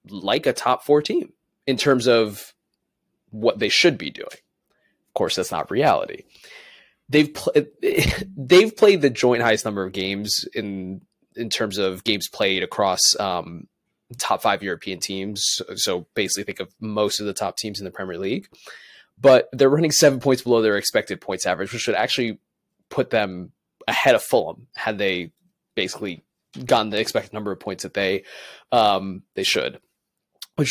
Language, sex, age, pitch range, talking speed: English, male, 20-39, 105-145 Hz, 170 wpm